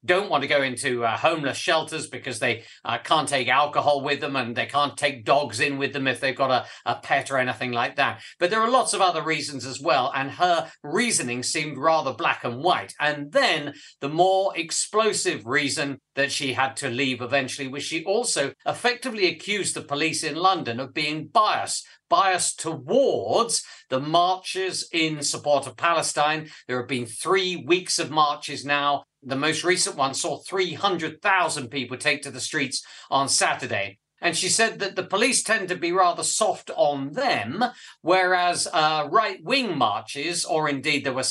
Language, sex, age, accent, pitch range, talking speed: English, male, 50-69, British, 135-175 Hz, 185 wpm